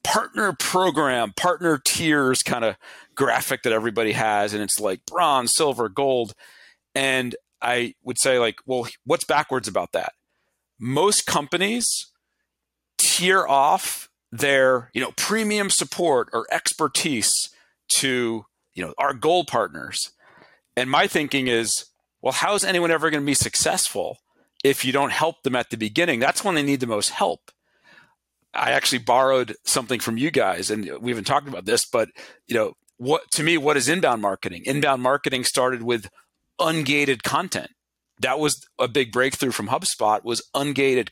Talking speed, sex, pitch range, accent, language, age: 160 wpm, male, 120-160 Hz, American, English, 40-59